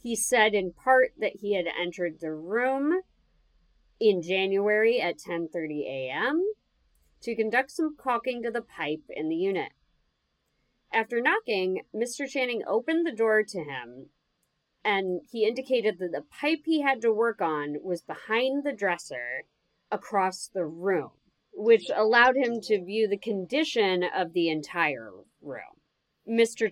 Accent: American